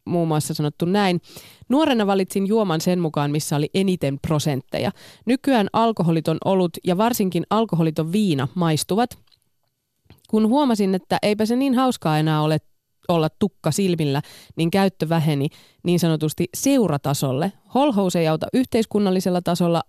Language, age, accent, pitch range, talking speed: Finnish, 20-39, native, 150-195 Hz, 135 wpm